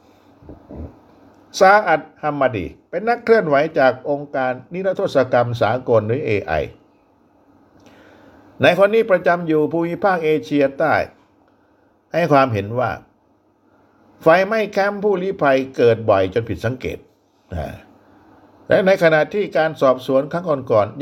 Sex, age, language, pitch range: male, 60-79, Thai, 120-185 Hz